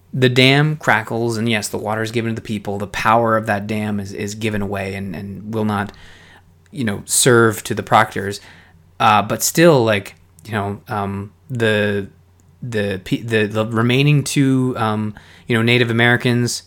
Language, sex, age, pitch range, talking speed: English, male, 20-39, 100-125 Hz, 175 wpm